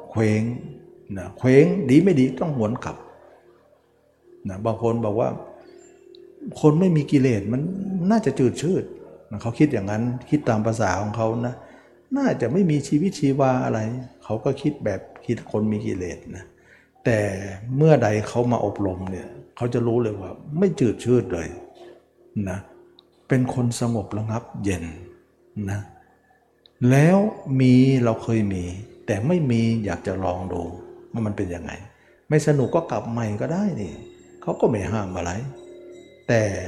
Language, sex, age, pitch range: Thai, male, 60-79, 105-150 Hz